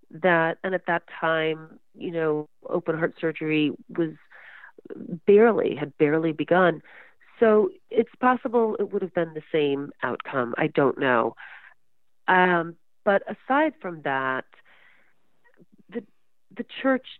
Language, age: English, 40-59